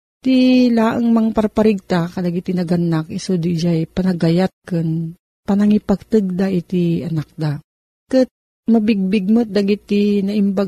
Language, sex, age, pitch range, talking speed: Filipino, female, 40-59, 165-210 Hz, 120 wpm